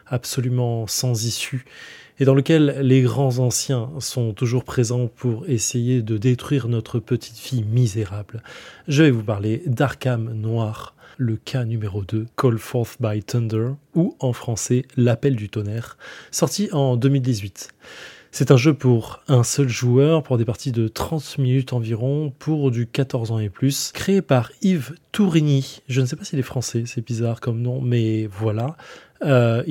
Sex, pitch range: male, 115-150 Hz